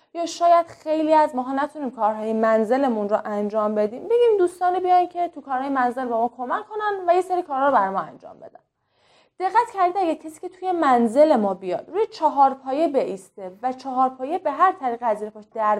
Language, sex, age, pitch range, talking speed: Persian, female, 20-39, 215-315 Hz, 200 wpm